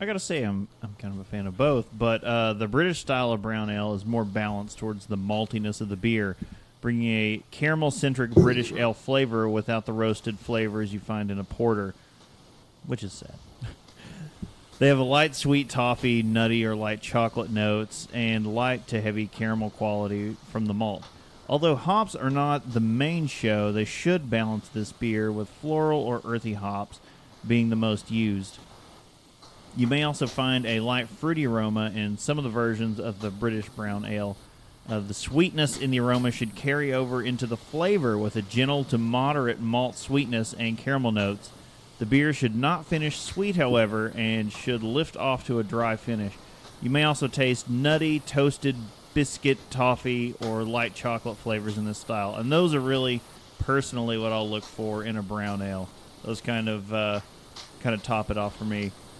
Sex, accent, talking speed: male, American, 185 wpm